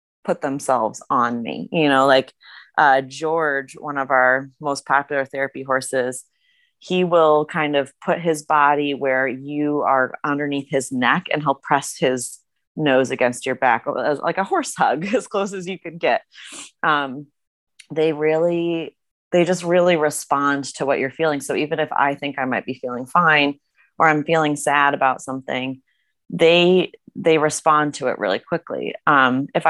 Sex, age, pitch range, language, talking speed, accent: female, 30-49, 135-170 Hz, English, 170 wpm, American